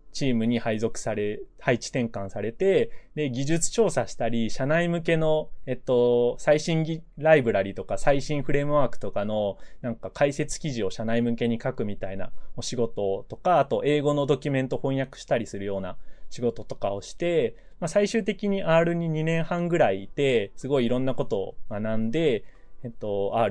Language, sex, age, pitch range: Japanese, male, 20-39, 110-150 Hz